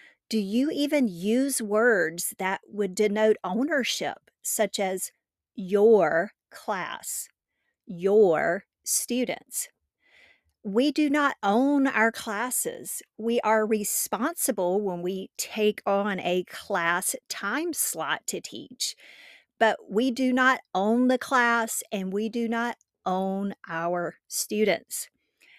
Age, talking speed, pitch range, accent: 50-69, 115 wpm, 200-260 Hz, American